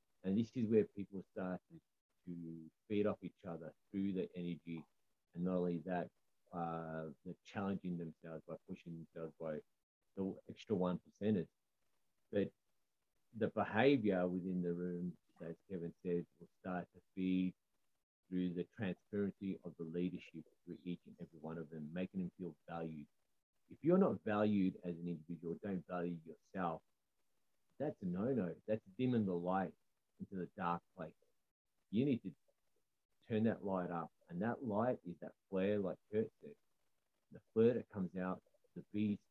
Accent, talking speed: Australian, 160 wpm